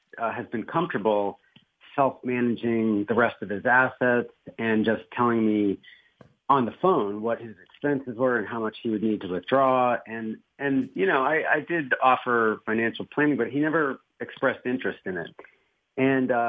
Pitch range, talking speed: 105-135 Hz, 170 wpm